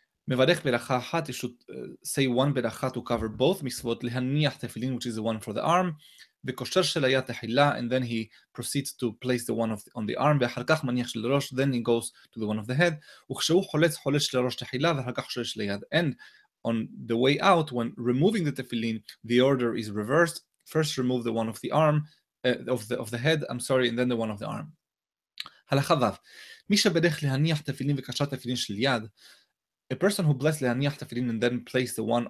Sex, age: male, 20-39